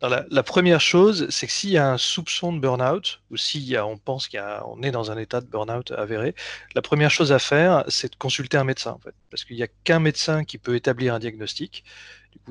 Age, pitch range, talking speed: 30-49, 115-145 Hz, 255 wpm